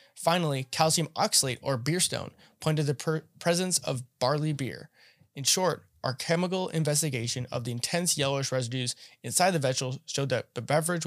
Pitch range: 130-160 Hz